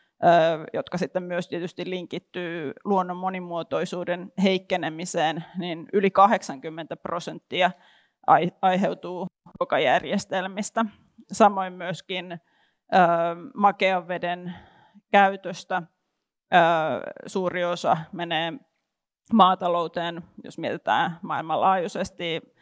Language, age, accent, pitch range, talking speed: Finnish, 30-49, native, 170-195 Hz, 70 wpm